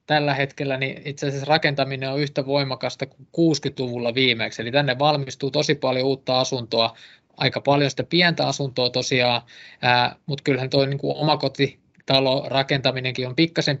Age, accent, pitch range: 20-39, native, 125-140 Hz